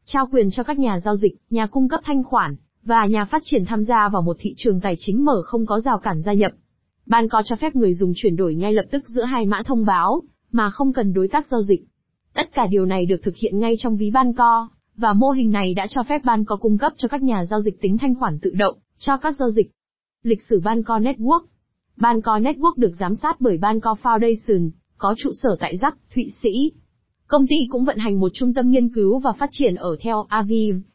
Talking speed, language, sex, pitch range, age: 245 wpm, Vietnamese, female, 205-250 Hz, 20-39